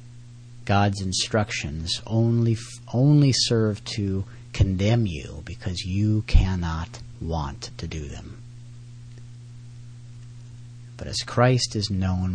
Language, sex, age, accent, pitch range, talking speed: English, male, 40-59, American, 105-120 Hz, 95 wpm